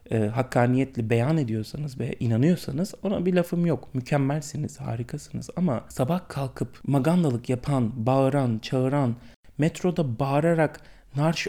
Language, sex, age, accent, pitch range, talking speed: Turkish, male, 30-49, native, 120-160 Hz, 115 wpm